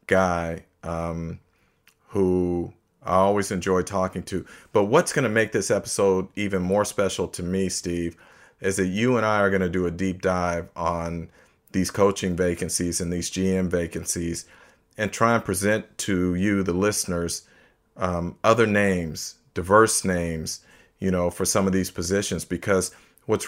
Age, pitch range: 40-59, 90-100 Hz